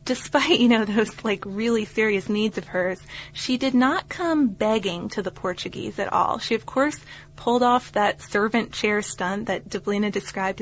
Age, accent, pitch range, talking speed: 20-39, American, 195-225 Hz, 180 wpm